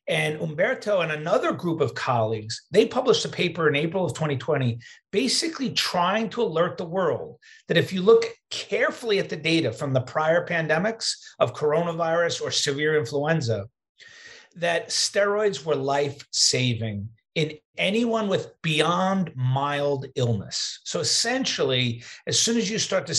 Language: English